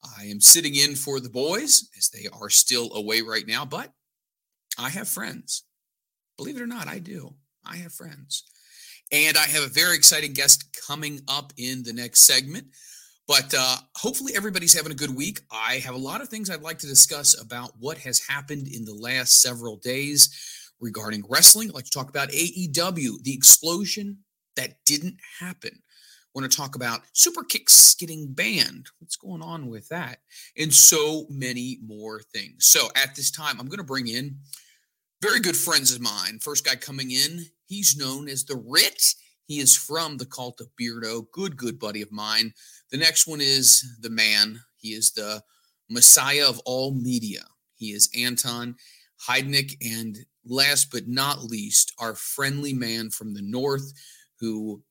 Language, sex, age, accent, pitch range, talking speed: English, male, 40-59, American, 120-155 Hz, 175 wpm